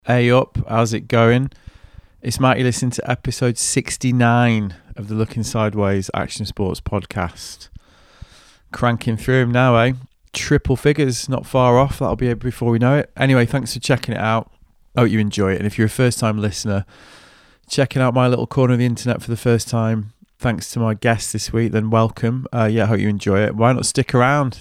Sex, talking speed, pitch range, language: male, 205 wpm, 100-120 Hz, English